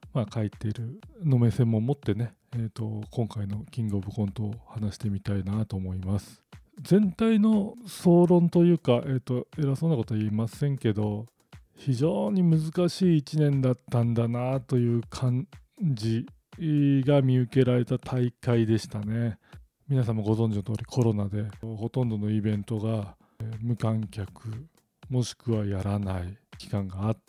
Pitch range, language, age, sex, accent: 110-150 Hz, Japanese, 40-59, male, native